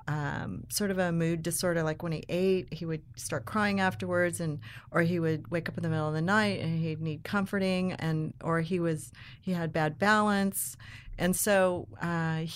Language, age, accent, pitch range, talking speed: English, 40-59, American, 150-175 Hz, 200 wpm